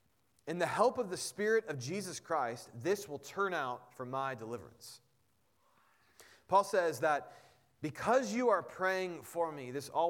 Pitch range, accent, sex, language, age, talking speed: 125-170 Hz, American, male, English, 30-49, 160 wpm